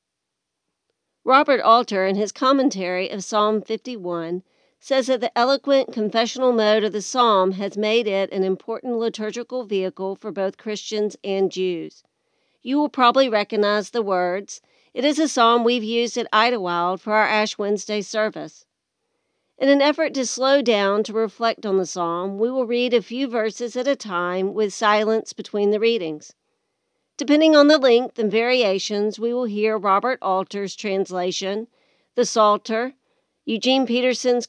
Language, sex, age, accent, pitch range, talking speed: English, female, 50-69, American, 195-245 Hz, 155 wpm